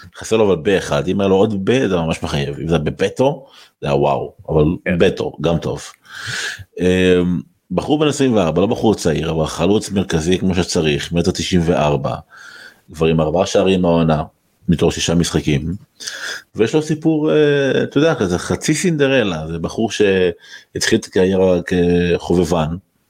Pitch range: 85-95 Hz